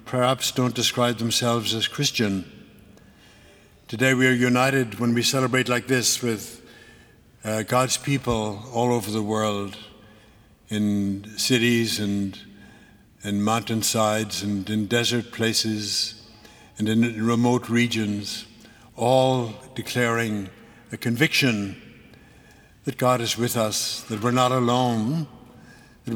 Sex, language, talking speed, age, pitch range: male, English, 115 wpm, 60-79, 105-120 Hz